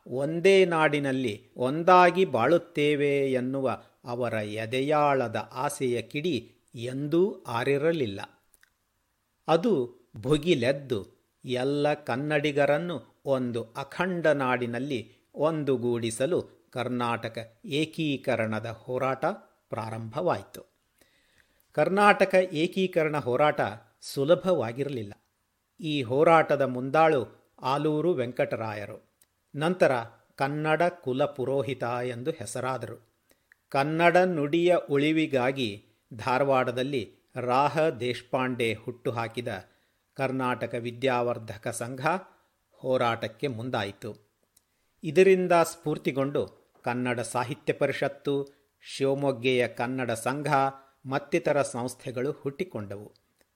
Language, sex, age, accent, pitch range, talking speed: Kannada, male, 50-69, native, 120-150 Hz, 70 wpm